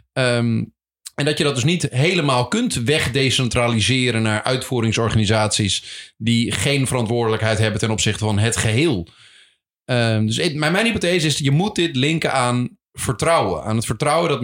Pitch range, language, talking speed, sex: 110-145 Hz, Dutch, 160 wpm, male